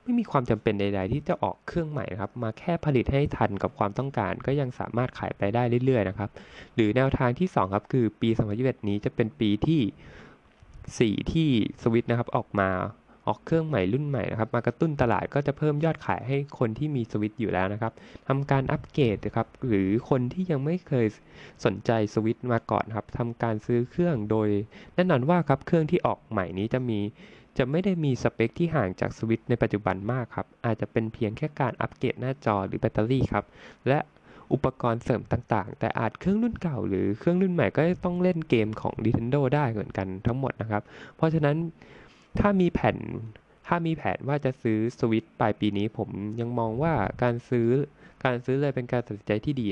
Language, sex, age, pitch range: Thai, male, 20-39, 105-140 Hz